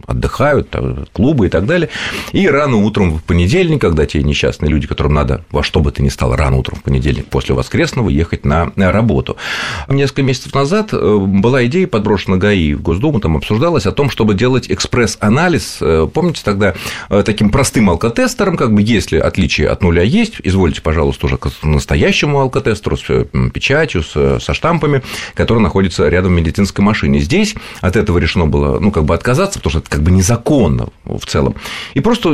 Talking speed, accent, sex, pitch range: 175 wpm, native, male, 80-125 Hz